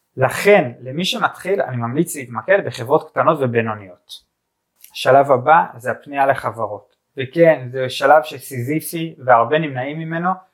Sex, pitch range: male, 130-170 Hz